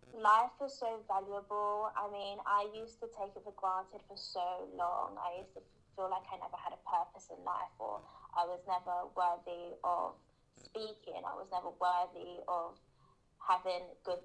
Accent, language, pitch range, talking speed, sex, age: British, English, 180-205 Hz, 175 wpm, female, 10-29